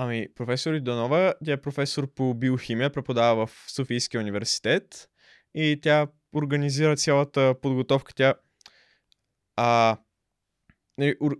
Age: 20-39